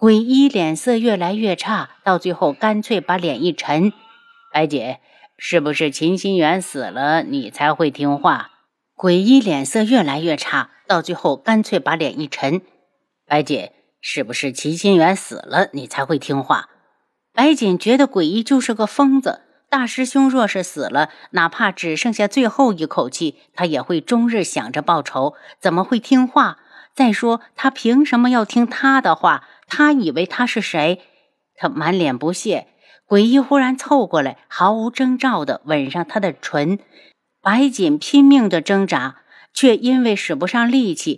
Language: Chinese